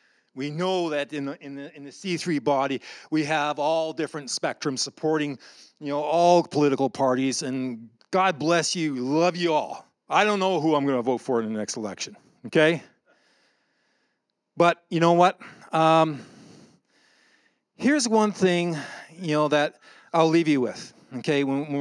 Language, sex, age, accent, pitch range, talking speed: English, male, 40-59, American, 135-175 Hz, 170 wpm